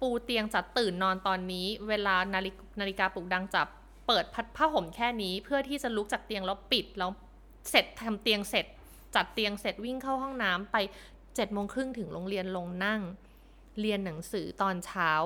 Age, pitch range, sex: 20-39, 185-235 Hz, female